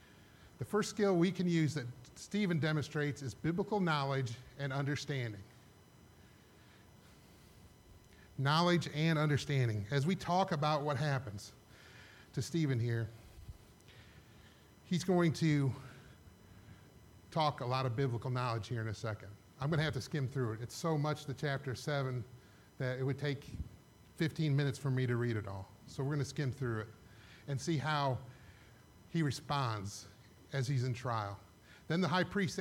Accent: American